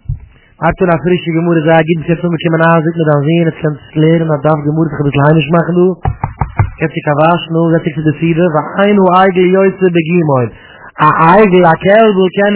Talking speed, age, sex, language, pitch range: 120 wpm, 30-49, male, English, 140-185 Hz